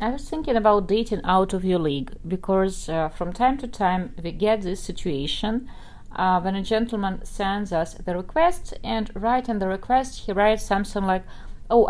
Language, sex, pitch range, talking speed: English, female, 190-235 Hz, 185 wpm